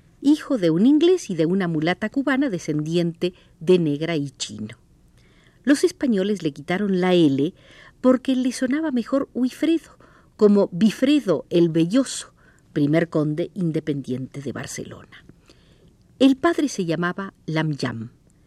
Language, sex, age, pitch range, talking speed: Spanish, female, 50-69, 150-255 Hz, 130 wpm